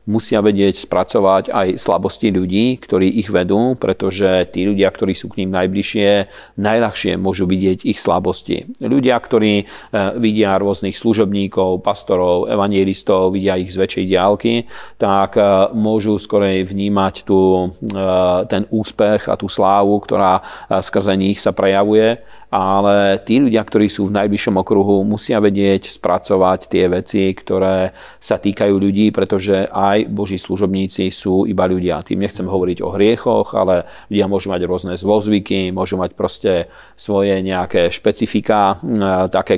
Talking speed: 140 wpm